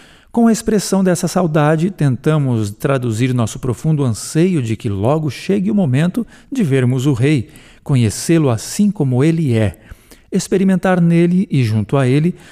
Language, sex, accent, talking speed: Portuguese, male, Brazilian, 150 wpm